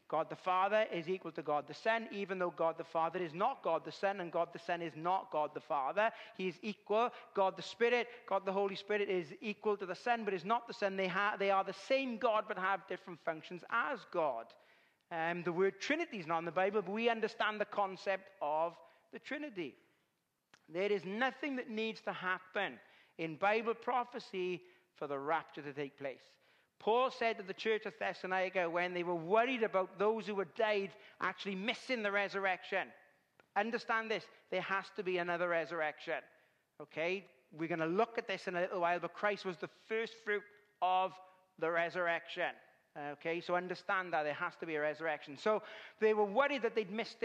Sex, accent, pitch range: male, British, 170-215 Hz